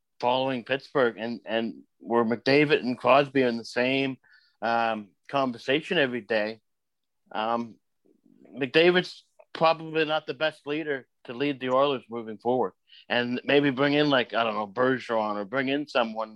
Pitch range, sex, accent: 115-145 Hz, male, American